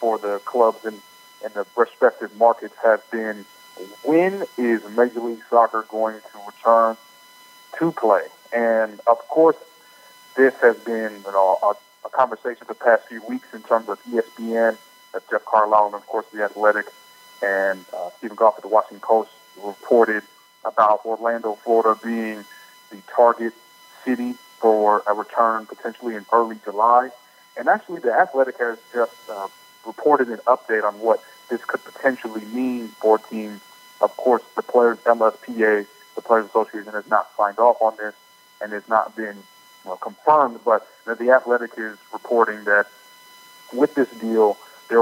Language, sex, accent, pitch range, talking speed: English, male, American, 110-125 Hz, 150 wpm